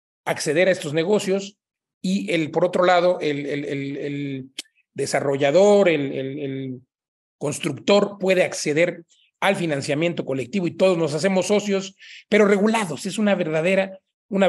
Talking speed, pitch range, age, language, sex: 140 wpm, 150-190 Hz, 40-59, Spanish, male